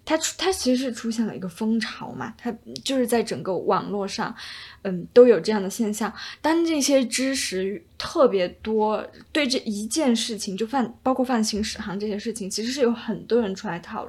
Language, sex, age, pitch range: Chinese, female, 10-29, 205-245 Hz